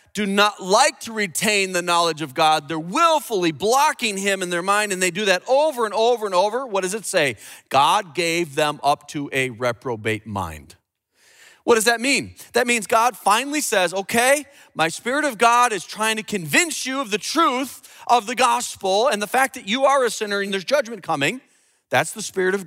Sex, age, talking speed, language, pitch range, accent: male, 30-49, 205 wpm, English, 145-220 Hz, American